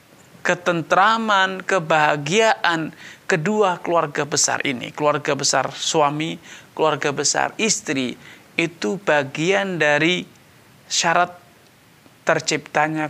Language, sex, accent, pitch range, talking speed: Indonesian, male, native, 150-200 Hz, 80 wpm